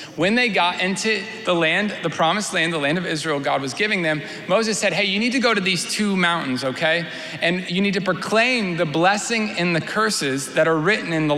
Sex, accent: male, American